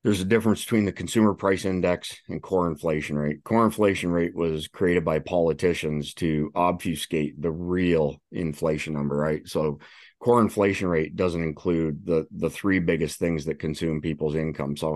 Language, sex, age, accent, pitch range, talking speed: English, male, 30-49, American, 75-90 Hz, 170 wpm